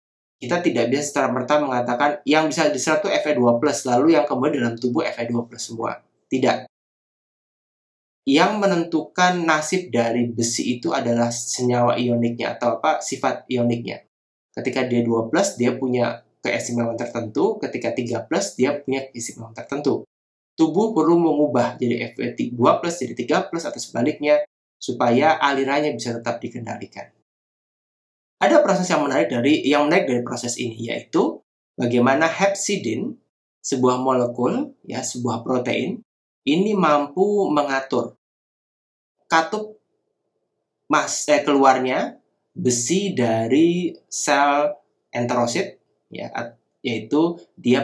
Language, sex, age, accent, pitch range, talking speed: Indonesian, male, 20-39, native, 120-150 Hz, 115 wpm